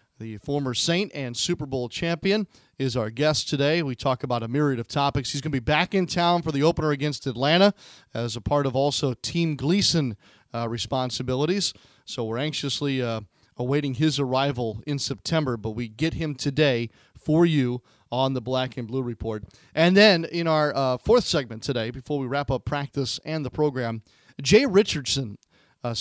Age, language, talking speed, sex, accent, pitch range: 40-59, English, 185 wpm, male, American, 125-155 Hz